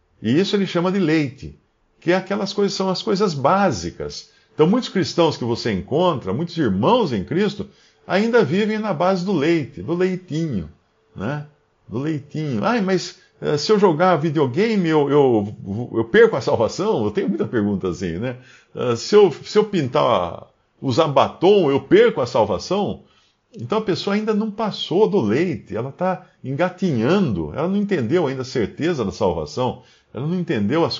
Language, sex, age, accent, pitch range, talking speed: Portuguese, male, 50-69, Brazilian, 125-190 Hz, 170 wpm